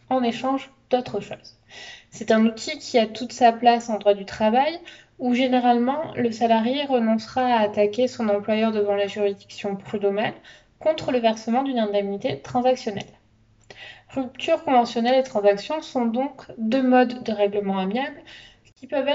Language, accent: English, French